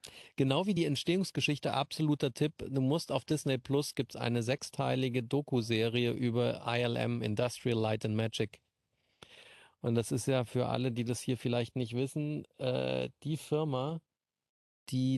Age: 40-59